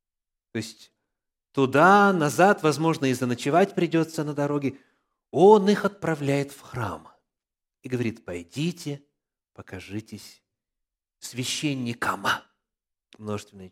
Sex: male